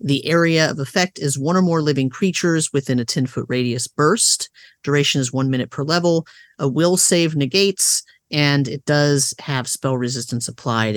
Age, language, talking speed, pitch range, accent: 40-59, English, 175 wpm, 135-180 Hz, American